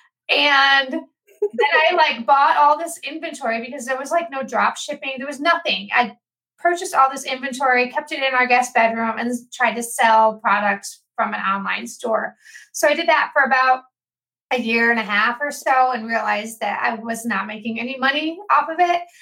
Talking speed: 195 wpm